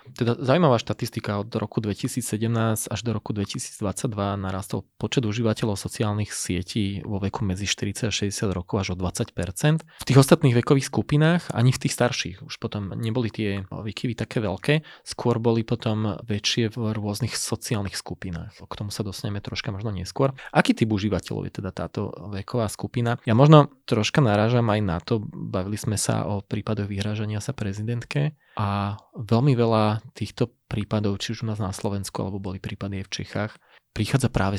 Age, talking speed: 20-39, 170 wpm